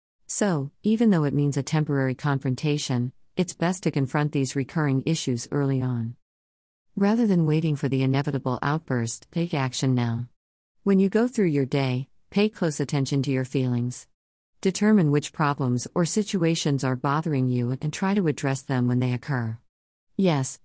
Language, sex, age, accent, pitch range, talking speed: English, female, 50-69, American, 130-170 Hz, 165 wpm